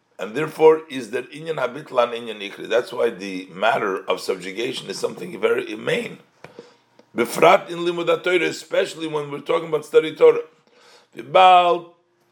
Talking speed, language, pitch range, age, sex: 140 wpm, English, 120-185 Hz, 50-69, male